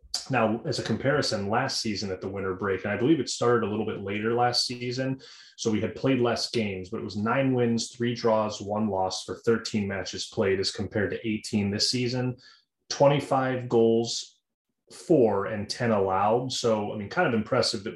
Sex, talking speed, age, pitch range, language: male, 195 wpm, 30-49, 100-115 Hz, English